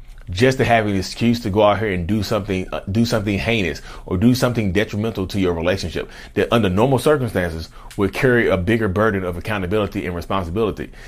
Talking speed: 190 wpm